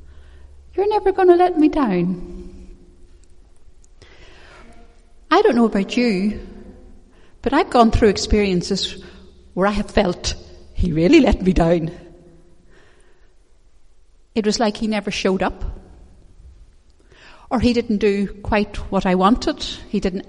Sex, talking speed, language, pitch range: female, 125 wpm, English, 180-255 Hz